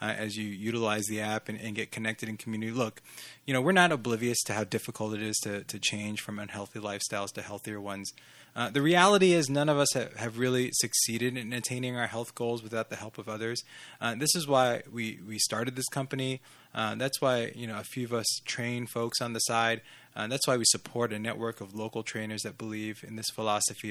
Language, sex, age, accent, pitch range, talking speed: English, male, 20-39, American, 110-140 Hz, 230 wpm